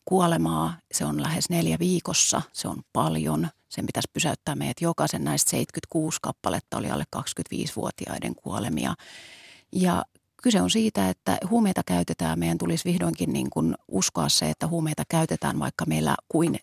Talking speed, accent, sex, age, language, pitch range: 145 wpm, native, female, 40-59, Finnish, 120-180 Hz